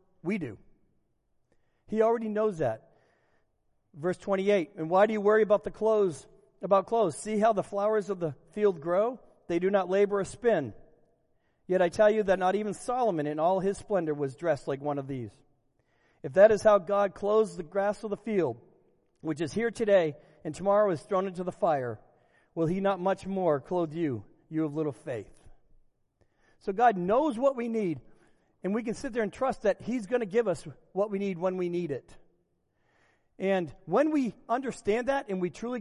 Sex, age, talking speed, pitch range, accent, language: male, 50-69, 195 wpm, 165-220 Hz, American, English